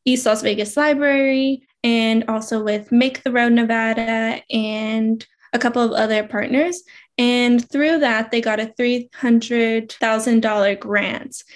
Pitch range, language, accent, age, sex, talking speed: 220-260 Hz, English, American, 10-29, female, 130 wpm